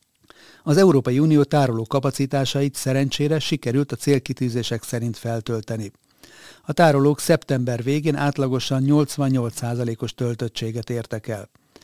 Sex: male